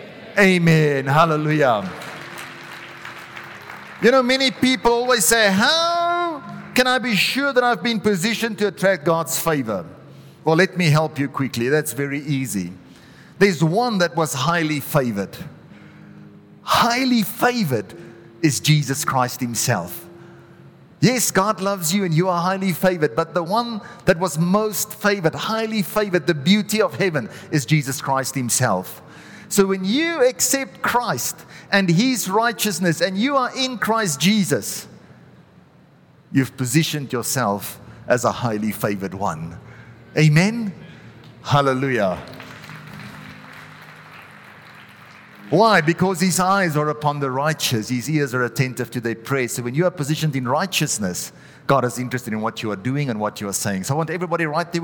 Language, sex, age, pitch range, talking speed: English, male, 40-59, 135-205 Hz, 145 wpm